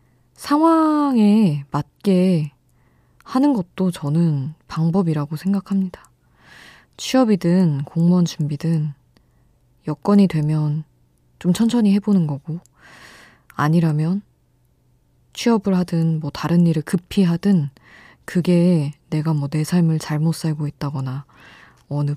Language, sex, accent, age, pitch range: Korean, female, native, 20-39, 150-185 Hz